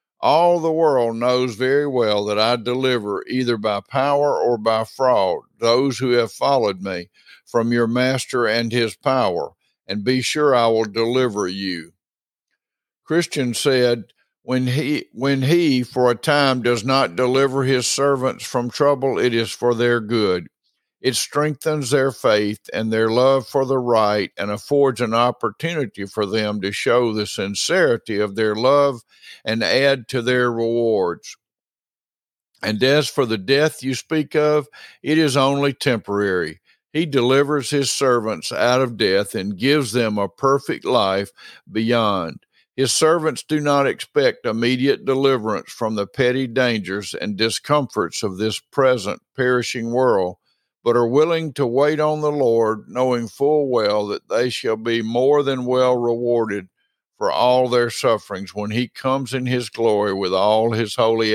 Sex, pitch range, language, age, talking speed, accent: male, 110-135 Hz, English, 50-69, 155 wpm, American